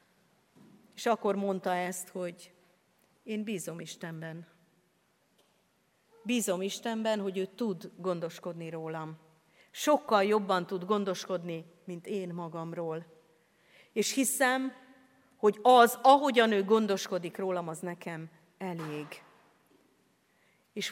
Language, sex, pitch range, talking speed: Hungarian, female, 175-220 Hz, 100 wpm